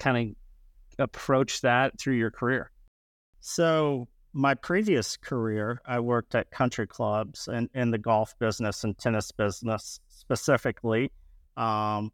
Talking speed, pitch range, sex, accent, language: 130 wpm, 105-125 Hz, male, American, English